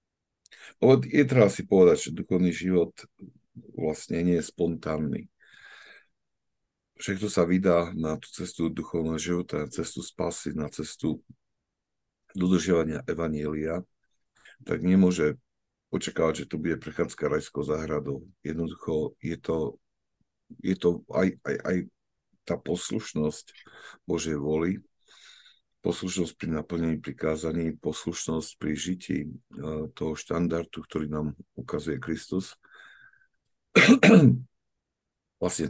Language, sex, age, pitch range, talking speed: Slovak, male, 50-69, 80-90 Hz, 100 wpm